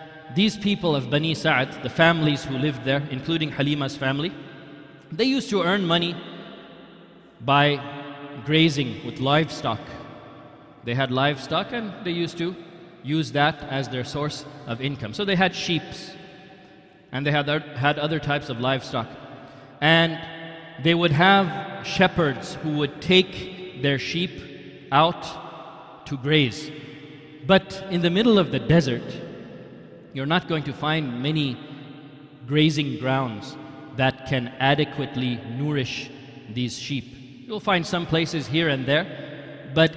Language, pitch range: English, 135-165 Hz